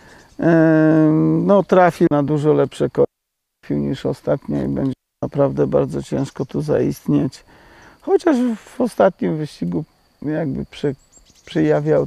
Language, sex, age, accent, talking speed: Polish, male, 50-69, native, 105 wpm